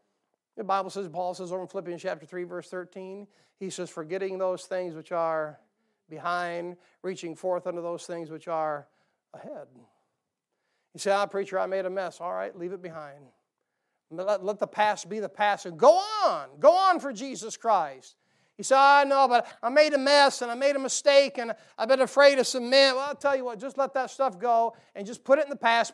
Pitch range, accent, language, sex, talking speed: 180-235 Hz, American, English, male, 220 wpm